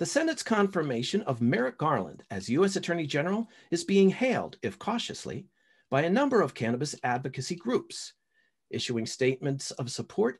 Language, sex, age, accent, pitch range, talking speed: English, male, 50-69, American, 130-200 Hz, 150 wpm